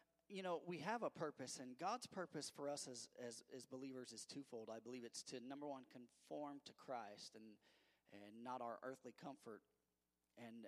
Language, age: English, 30-49